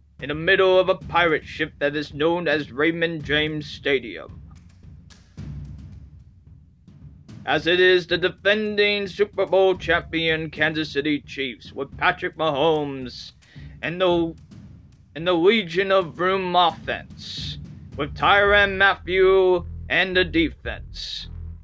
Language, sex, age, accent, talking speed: English, male, 30-49, American, 115 wpm